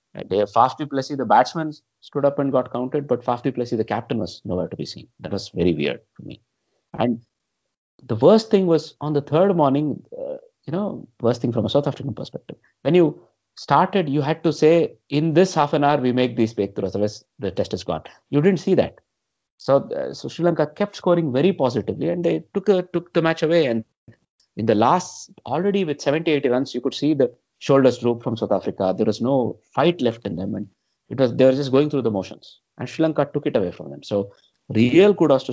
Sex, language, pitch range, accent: male, English, 110-155 Hz, Indian